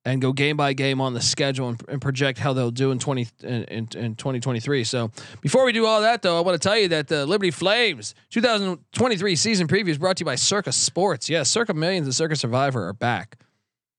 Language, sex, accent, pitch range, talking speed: English, male, American, 125-160 Hz, 240 wpm